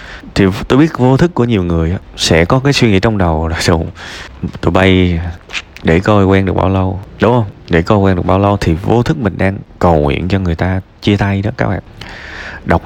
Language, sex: Vietnamese, male